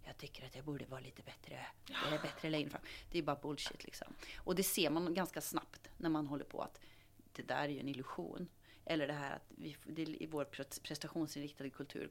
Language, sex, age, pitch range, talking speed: English, female, 30-49, 145-190 Hz, 205 wpm